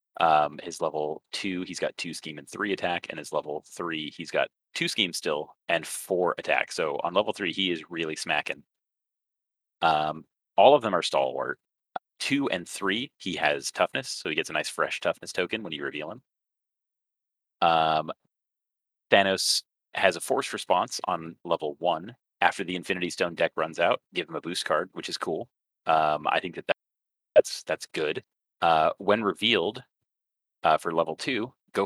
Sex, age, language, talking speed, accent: male, 30-49, English, 175 wpm, American